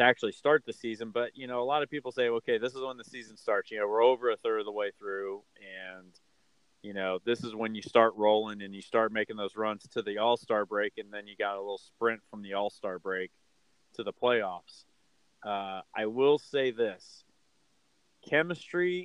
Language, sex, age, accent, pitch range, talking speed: English, male, 30-49, American, 105-135 Hz, 215 wpm